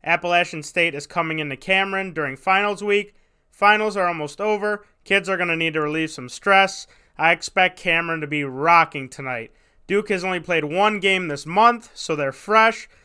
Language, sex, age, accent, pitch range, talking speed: English, male, 20-39, American, 145-195 Hz, 185 wpm